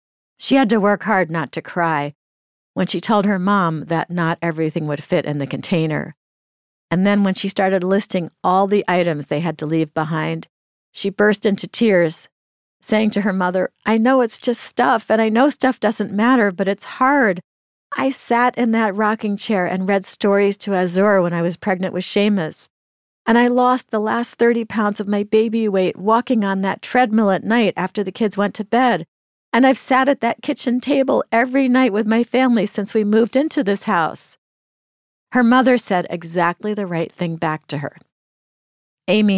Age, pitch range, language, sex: 50-69, 165-220 Hz, English, female